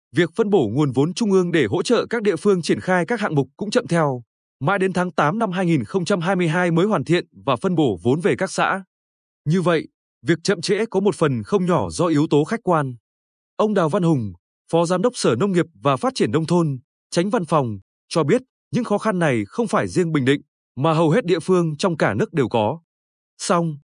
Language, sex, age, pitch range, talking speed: Vietnamese, male, 20-39, 145-195 Hz, 230 wpm